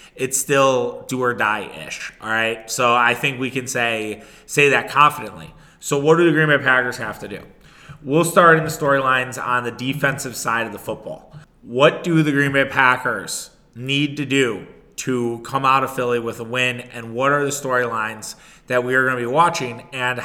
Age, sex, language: 20-39, male, English